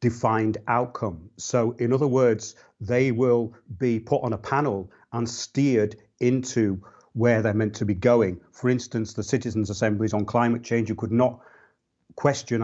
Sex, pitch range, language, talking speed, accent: male, 110-130 Hz, English, 160 wpm, British